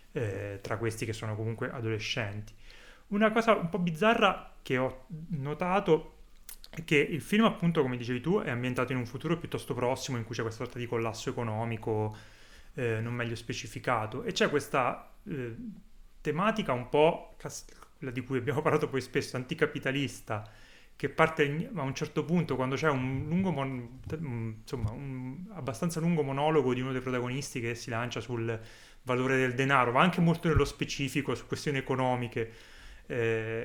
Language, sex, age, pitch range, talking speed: Italian, male, 30-49, 110-140 Hz, 170 wpm